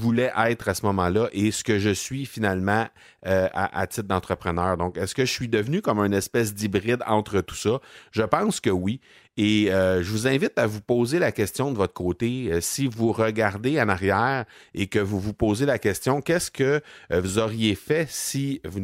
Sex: male